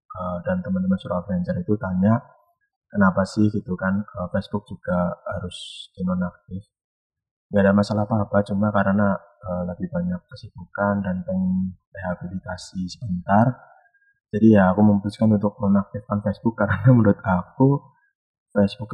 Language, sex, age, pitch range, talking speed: Indonesian, male, 30-49, 95-130 Hz, 125 wpm